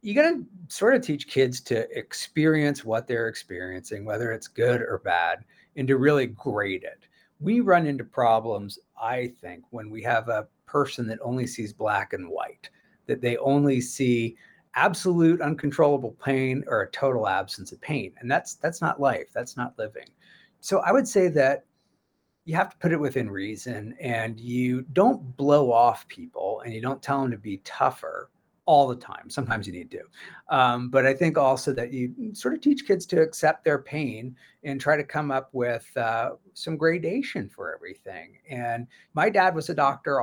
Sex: male